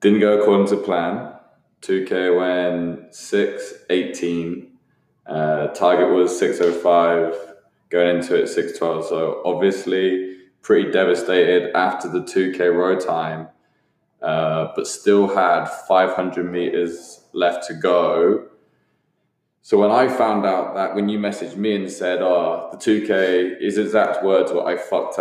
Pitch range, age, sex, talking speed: 85-100 Hz, 20-39, male, 130 wpm